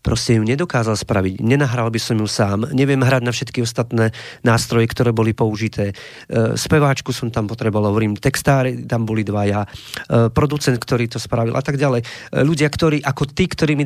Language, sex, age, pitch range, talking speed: Slovak, male, 40-59, 125-155 Hz, 180 wpm